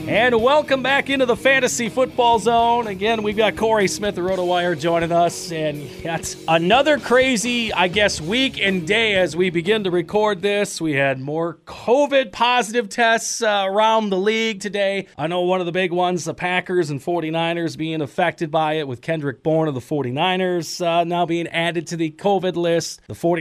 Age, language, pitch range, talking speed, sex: 30-49, English, 155-205 Hz, 185 wpm, male